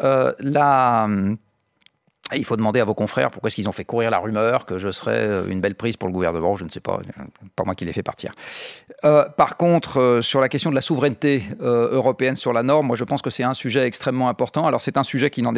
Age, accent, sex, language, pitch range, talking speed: 40-59, French, male, French, 110-135 Hz, 250 wpm